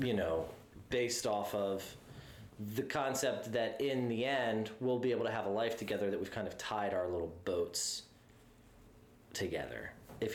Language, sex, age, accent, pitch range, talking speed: English, male, 30-49, American, 100-130 Hz, 170 wpm